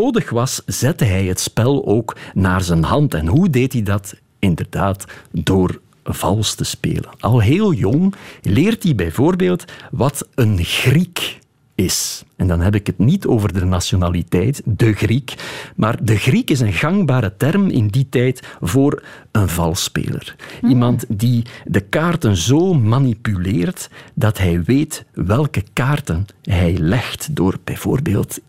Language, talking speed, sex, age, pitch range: Dutch, 145 wpm, male, 50-69, 100-145 Hz